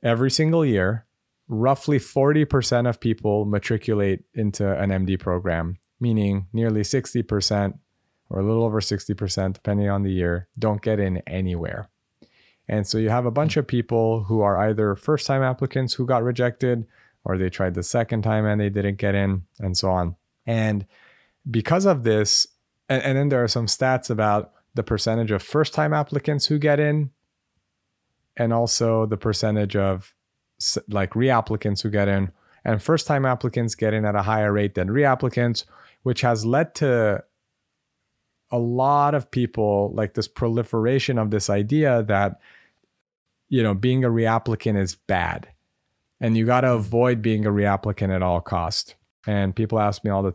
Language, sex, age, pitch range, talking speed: English, male, 30-49, 100-125 Hz, 165 wpm